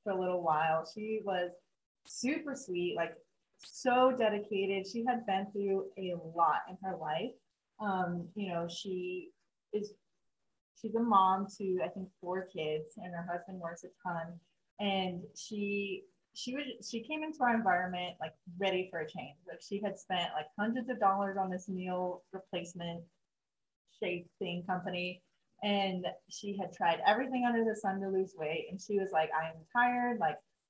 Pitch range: 175-205 Hz